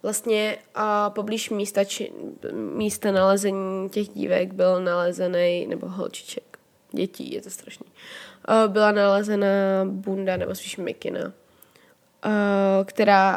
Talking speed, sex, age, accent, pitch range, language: 115 wpm, female, 20-39, native, 190-210 Hz, Czech